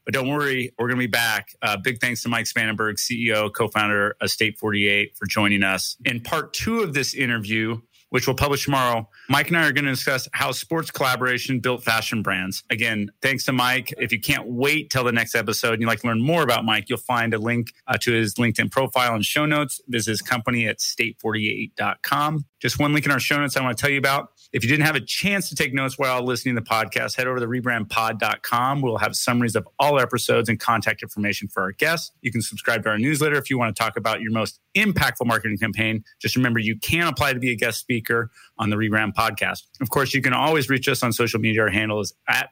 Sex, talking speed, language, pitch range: male, 245 wpm, English, 110-135 Hz